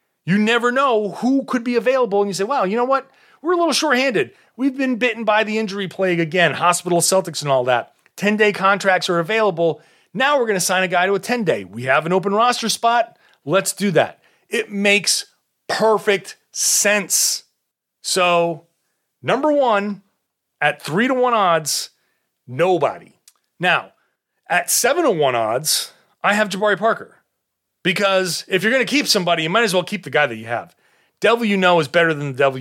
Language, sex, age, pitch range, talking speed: English, male, 30-49, 165-225 Hz, 190 wpm